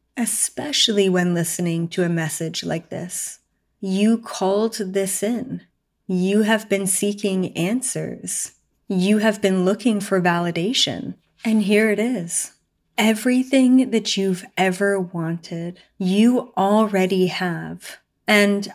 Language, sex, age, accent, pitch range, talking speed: English, female, 30-49, American, 180-220 Hz, 115 wpm